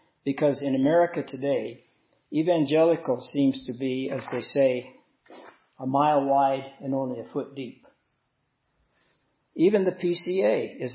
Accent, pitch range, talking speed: American, 130-155 Hz, 125 wpm